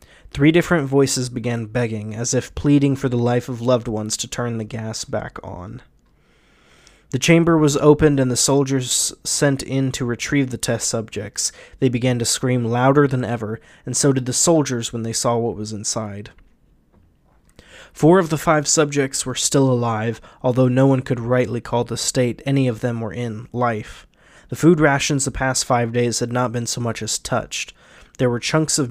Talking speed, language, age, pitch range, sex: 190 wpm, English, 20-39, 120-140 Hz, male